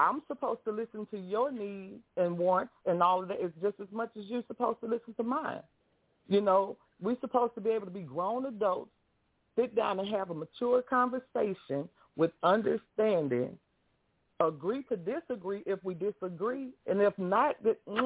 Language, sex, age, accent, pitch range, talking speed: English, female, 40-59, American, 190-250 Hz, 175 wpm